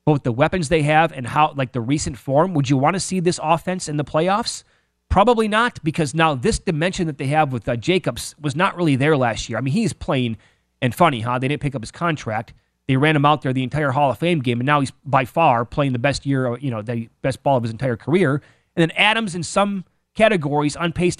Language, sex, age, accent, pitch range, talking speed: English, male, 30-49, American, 130-165 Hz, 250 wpm